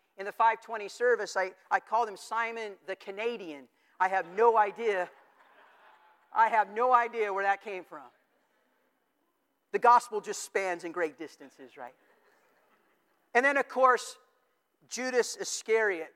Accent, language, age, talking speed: American, English, 50-69, 135 wpm